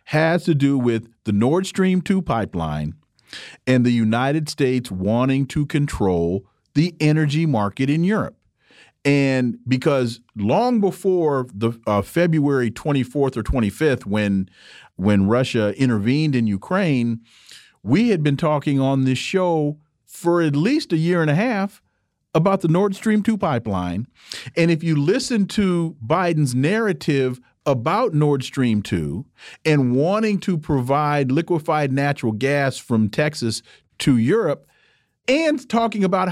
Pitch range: 115-170 Hz